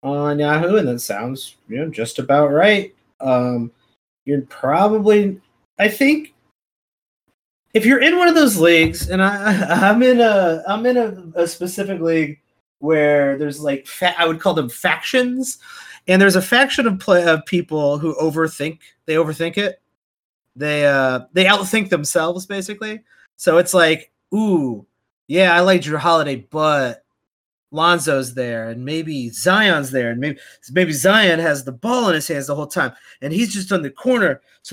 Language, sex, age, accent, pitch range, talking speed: English, male, 30-49, American, 145-200 Hz, 170 wpm